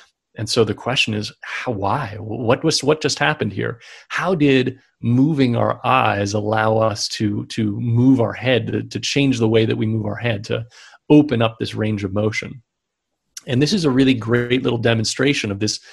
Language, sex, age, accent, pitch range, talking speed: English, male, 40-59, American, 105-125 Hz, 195 wpm